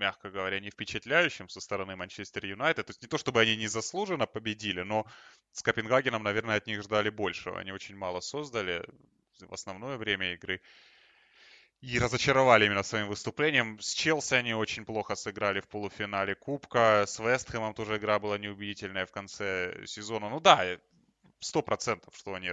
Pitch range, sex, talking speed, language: 100-120 Hz, male, 160 wpm, Russian